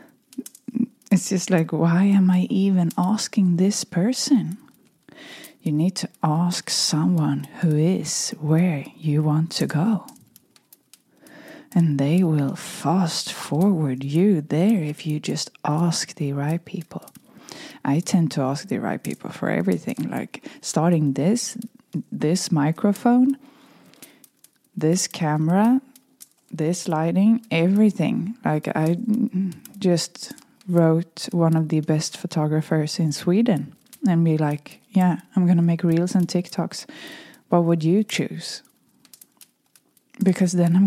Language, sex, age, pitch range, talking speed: English, female, 20-39, 160-225 Hz, 125 wpm